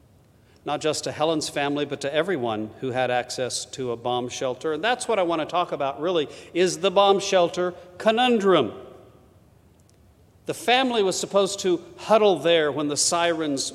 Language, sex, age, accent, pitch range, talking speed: English, male, 50-69, American, 125-185 Hz, 170 wpm